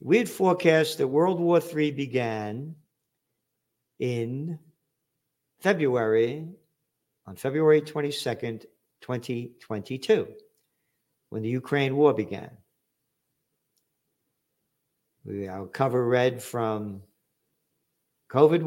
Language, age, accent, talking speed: English, 50-69, American, 80 wpm